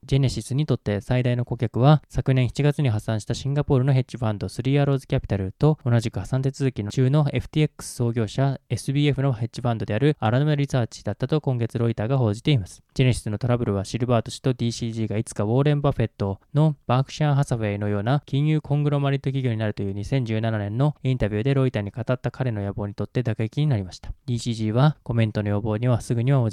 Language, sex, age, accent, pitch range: Japanese, male, 20-39, native, 110-135 Hz